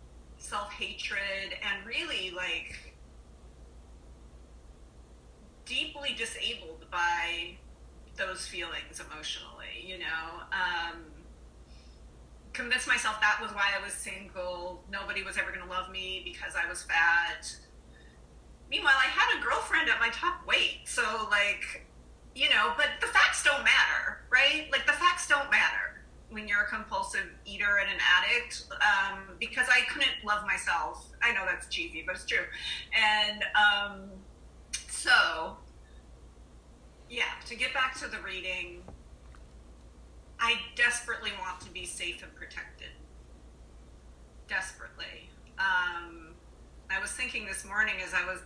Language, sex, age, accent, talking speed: English, female, 30-49, American, 130 wpm